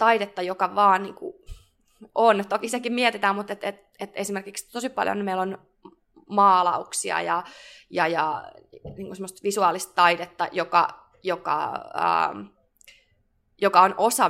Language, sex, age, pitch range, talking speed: Finnish, female, 20-39, 175-215 Hz, 125 wpm